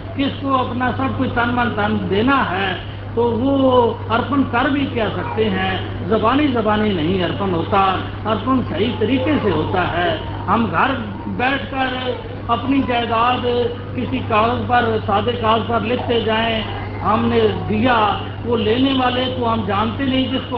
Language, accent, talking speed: Hindi, native, 150 wpm